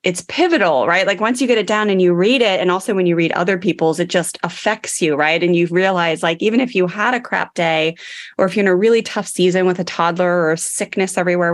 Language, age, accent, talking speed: English, 20-39, American, 260 wpm